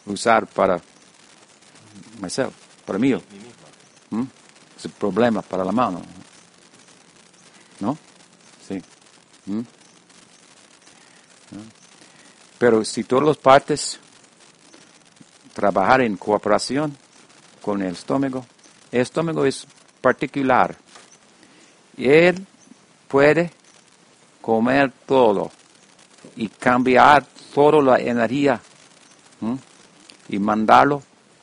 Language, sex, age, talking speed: English, male, 50-69, 85 wpm